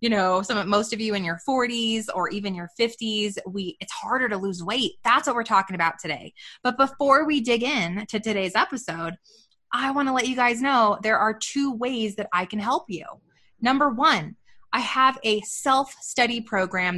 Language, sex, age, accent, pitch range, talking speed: English, female, 20-39, American, 185-240 Hz, 200 wpm